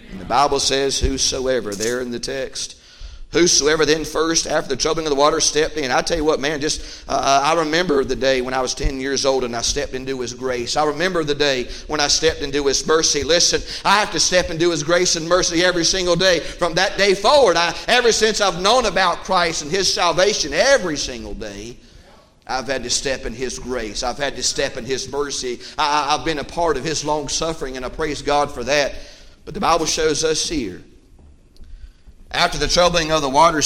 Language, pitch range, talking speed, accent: English, 135-185 Hz, 220 wpm, American